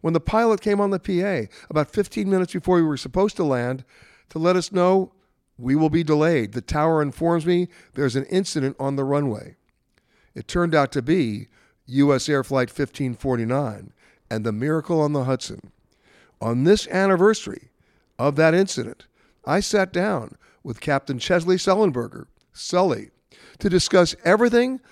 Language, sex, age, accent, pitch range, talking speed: English, male, 60-79, American, 140-190 Hz, 160 wpm